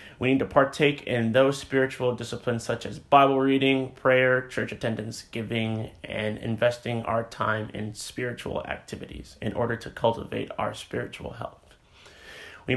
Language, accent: English, American